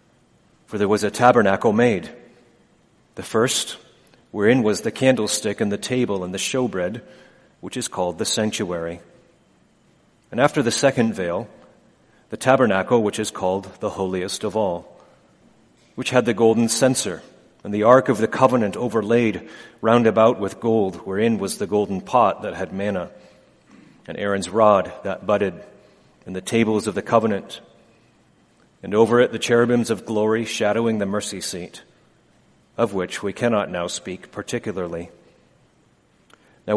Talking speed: 150 wpm